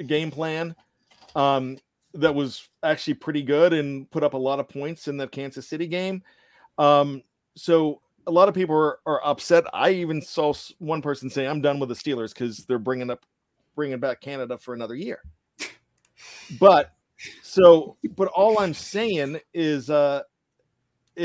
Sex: male